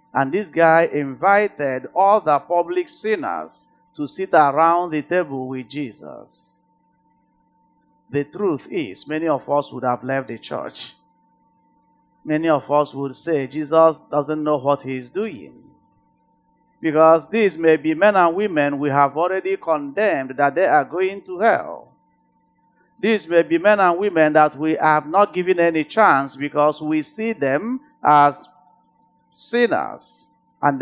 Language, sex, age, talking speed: English, male, 50-69, 145 wpm